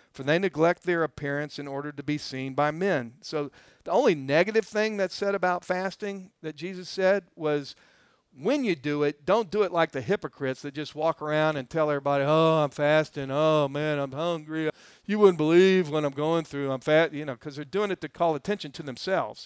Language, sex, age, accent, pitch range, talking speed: English, male, 50-69, American, 140-185 Hz, 215 wpm